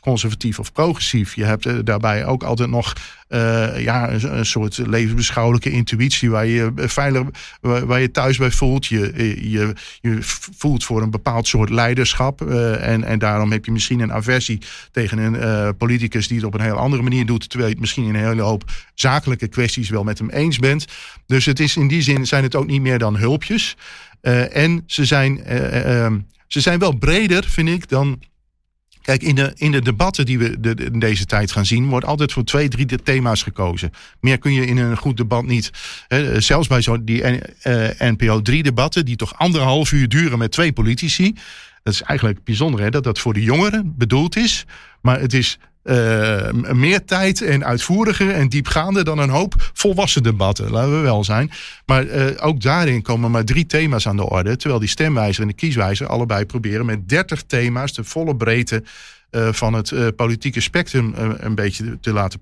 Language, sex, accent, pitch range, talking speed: Dutch, male, Dutch, 110-140 Hz, 185 wpm